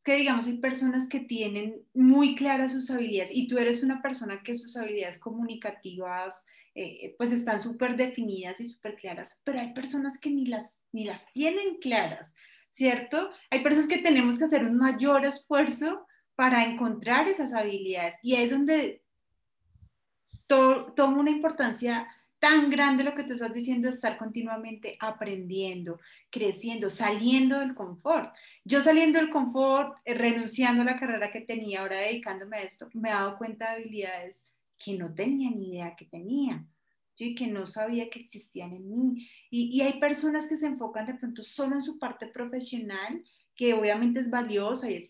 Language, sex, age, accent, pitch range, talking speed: Spanish, female, 30-49, Colombian, 215-265 Hz, 170 wpm